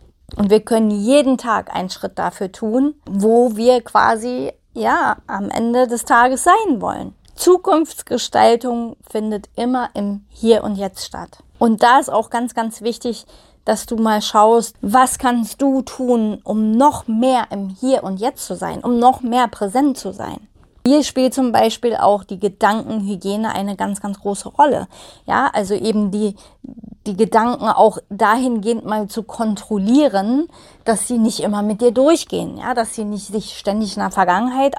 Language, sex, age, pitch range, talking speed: German, female, 30-49, 210-255 Hz, 165 wpm